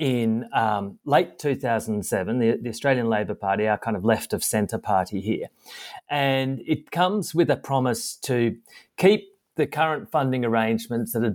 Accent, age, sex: Australian, 30-49, male